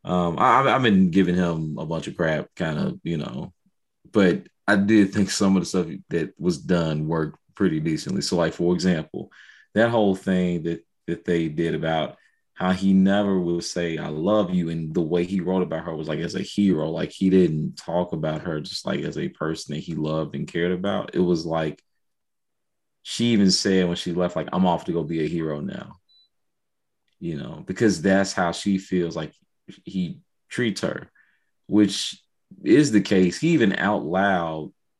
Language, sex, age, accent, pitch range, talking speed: English, male, 30-49, American, 85-95 Hz, 195 wpm